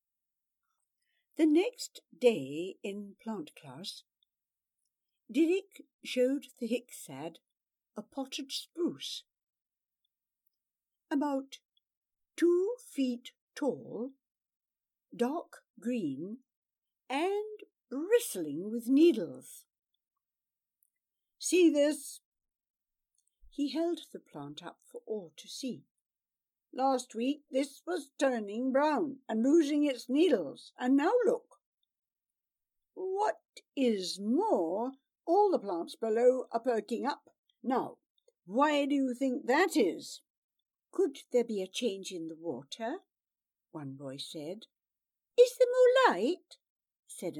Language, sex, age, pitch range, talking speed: English, female, 60-79, 240-345 Hz, 100 wpm